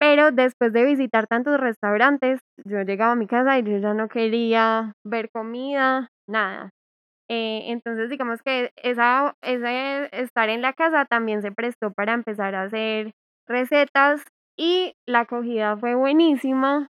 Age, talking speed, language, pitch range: 10-29, 140 wpm, Spanish, 220-270 Hz